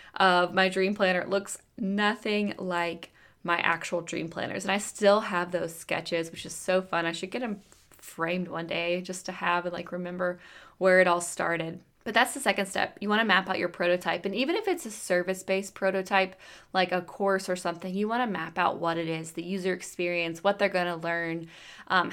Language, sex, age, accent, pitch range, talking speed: English, female, 20-39, American, 175-200 Hz, 210 wpm